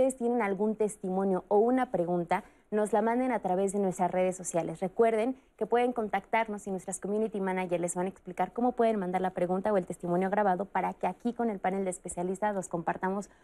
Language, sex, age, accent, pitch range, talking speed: Spanish, female, 20-39, Mexican, 180-215 Hz, 210 wpm